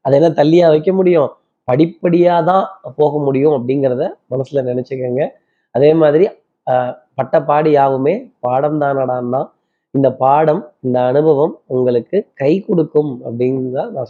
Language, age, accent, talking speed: Tamil, 20-39, native, 120 wpm